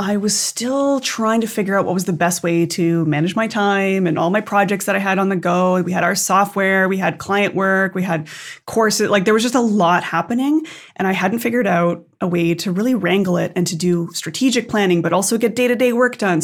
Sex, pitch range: female, 175-225 Hz